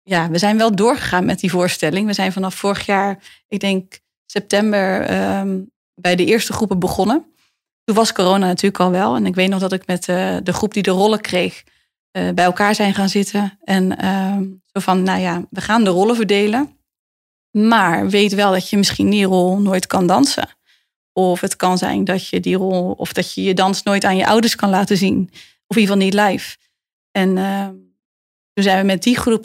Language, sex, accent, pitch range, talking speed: Dutch, female, Dutch, 190-225 Hz, 210 wpm